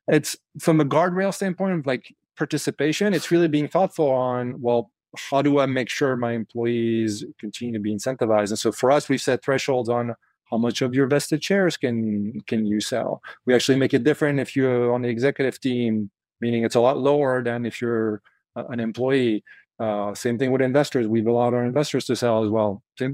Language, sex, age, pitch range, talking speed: English, male, 30-49, 115-145 Hz, 200 wpm